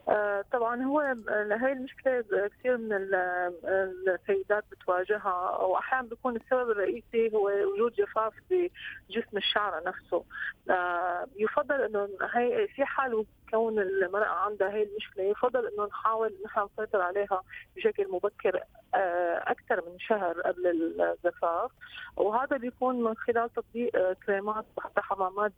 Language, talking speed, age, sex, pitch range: Arabic, 115 wpm, 30-49, female, 185-240 Hz